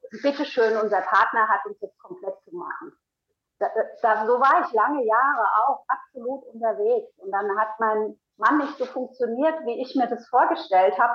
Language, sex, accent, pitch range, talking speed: German, female, German, 210-330 Hz, 170 wpm